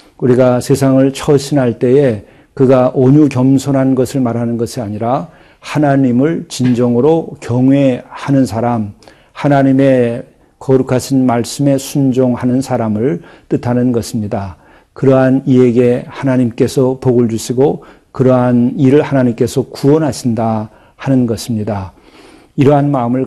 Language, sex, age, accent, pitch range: Korean, male, 40-59, native, 125-135 Hz